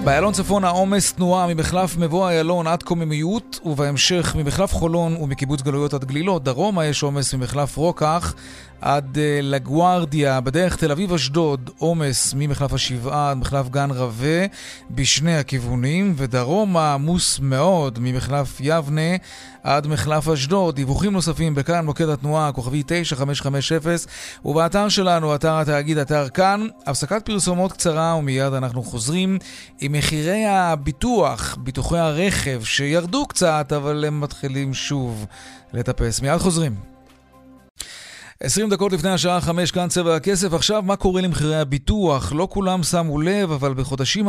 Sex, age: male, 30-49